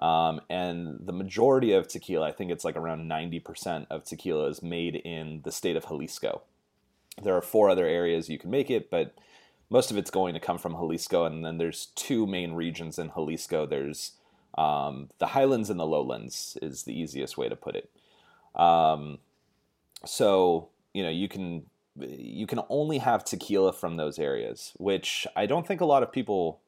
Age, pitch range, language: 30-49, 80-95 Hz, English